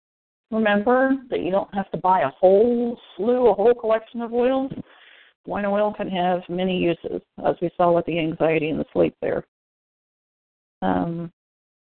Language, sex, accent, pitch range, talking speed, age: English, female, American, 170-220 Hz, 160 wpm, 40-59